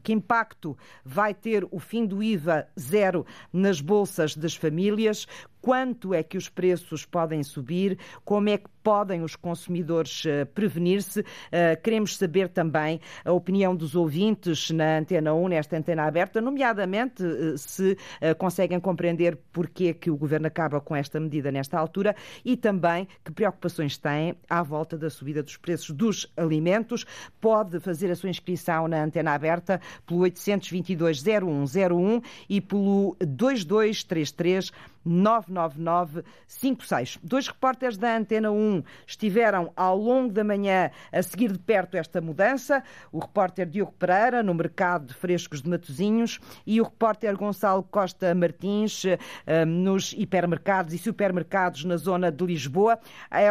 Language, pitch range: Portuguese, 170-205 Hz